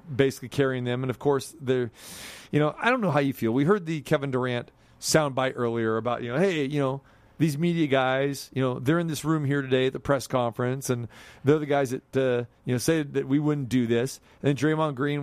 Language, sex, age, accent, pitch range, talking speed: English, male, 40-59, American, 125-145 Hz, 235 wpm